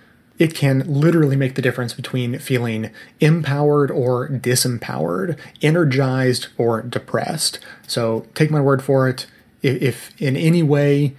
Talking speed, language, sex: 130 wpm, English, male